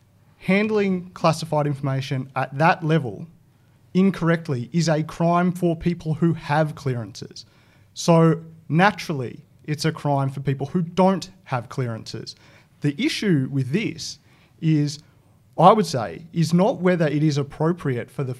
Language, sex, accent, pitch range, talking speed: English, male, Australian, 130-170 Hz, 135 wpm